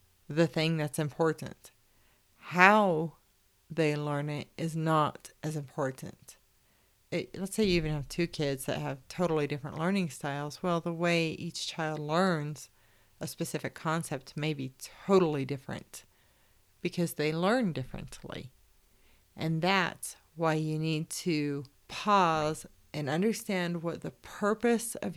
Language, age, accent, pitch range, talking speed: English, 40-59, American, 150-175 Hz, 130 wpm